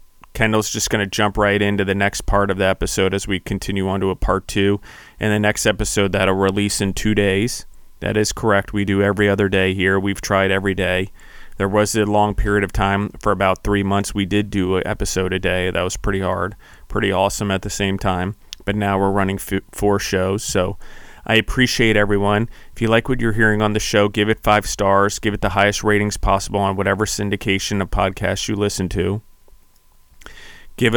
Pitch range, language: 95-105 Hz, English